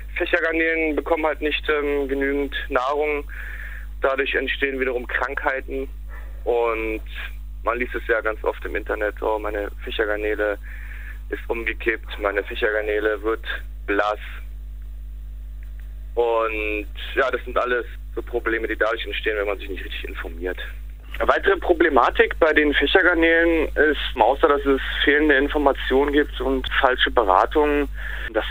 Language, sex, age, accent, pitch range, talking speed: German, male, 30-49, German, 105-145 Hz, 130 wpm